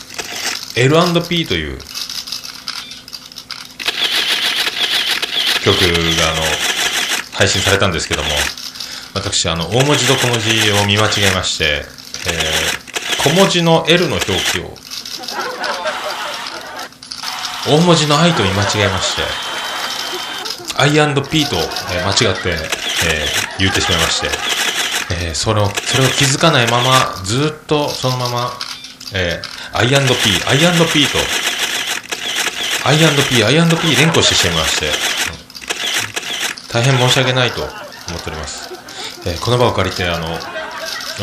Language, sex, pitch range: Japanese, male, 95-140 Hz